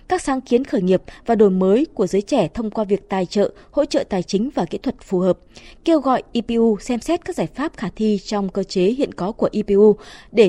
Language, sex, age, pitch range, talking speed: Vietnamese, female, 20-39, 190-255 Hz, 245 wpm